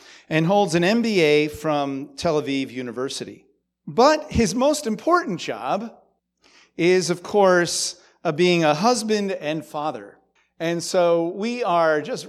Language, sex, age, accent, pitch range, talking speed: English, male, 40-59, American, 145-195 Hz, 130 wpm